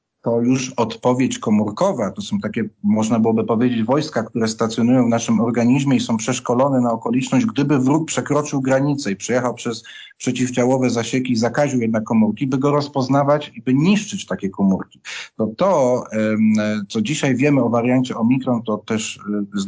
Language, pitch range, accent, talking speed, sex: Polish, 115-135 Hz, native, 160 wpm, male